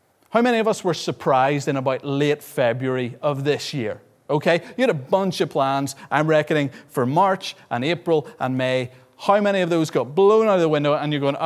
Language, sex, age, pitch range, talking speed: English, male, 30-49, 145-205 Hz, 215 wpm